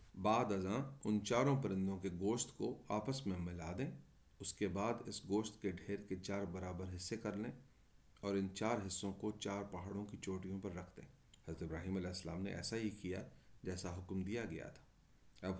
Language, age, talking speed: Urdu, 40-59, 195 wpm